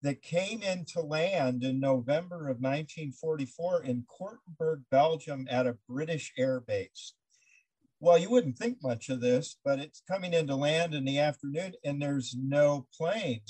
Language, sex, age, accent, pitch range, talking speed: English, male, 50-69, American, 130-170 Hz, 155 wpm